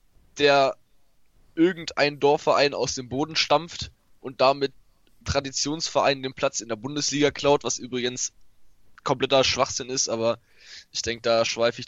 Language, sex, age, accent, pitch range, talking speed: German, male, 10-29, German, 120-140 Hz, 135 wpm